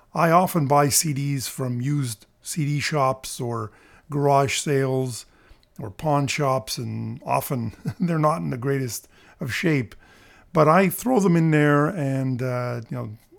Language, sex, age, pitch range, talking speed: English, male, 50-69, 125-155 Hz, 150 wpm